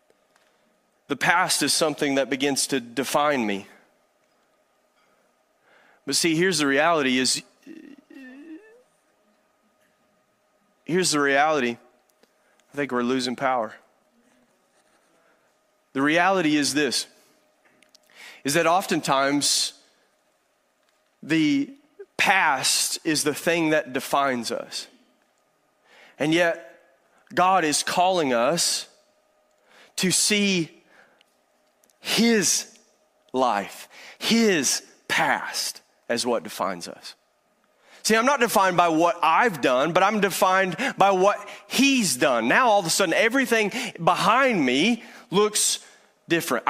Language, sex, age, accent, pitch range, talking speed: English, male, 30-49, American, 145-215 Hz, 100 wpm